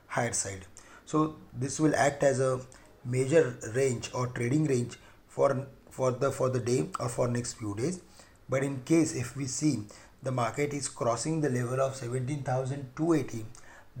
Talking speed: 165 wpm